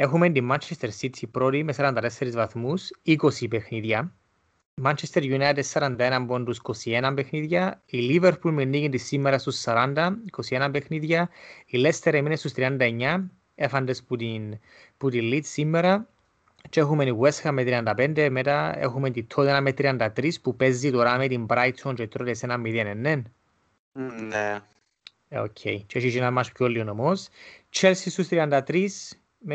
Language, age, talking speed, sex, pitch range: Greek, 30-49, 110 wpm, male, 125-155 Hz